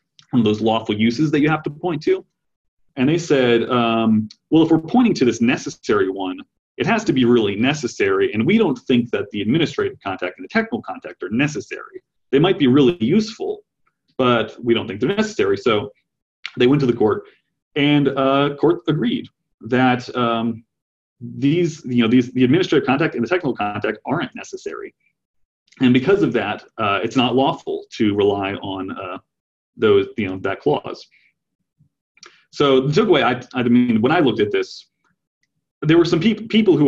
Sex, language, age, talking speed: male, English, 30-49, 180 wpm